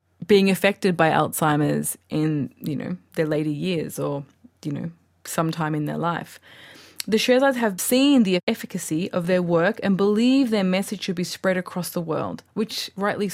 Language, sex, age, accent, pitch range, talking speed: English, female, 20-39, Australian, 170-215 Hz, 170 wpm